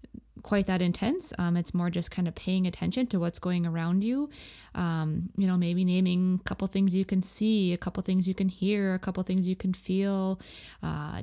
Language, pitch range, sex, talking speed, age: English, 175-195 Hz, female, 215 wpm, 20-39